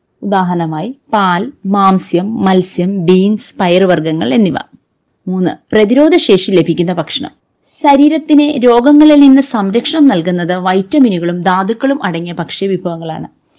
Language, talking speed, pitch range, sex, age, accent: Malayalam, 95 wpm, 170-235 Hz, female, 30-49, native